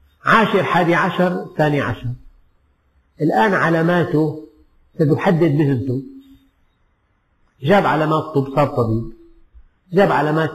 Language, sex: Arabic, male